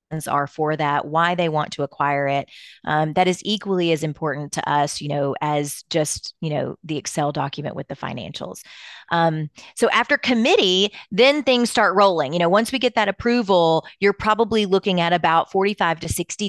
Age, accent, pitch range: 30-49, American, 155-190 Hz